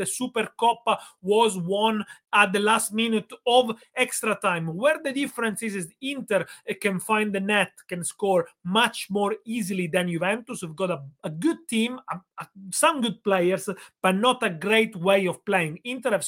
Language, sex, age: English, male, 30-49